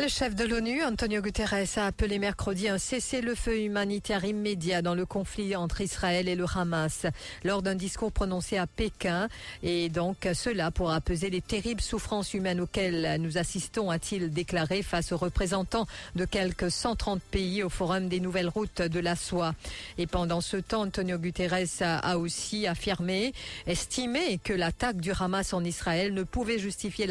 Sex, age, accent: female, 50-69, French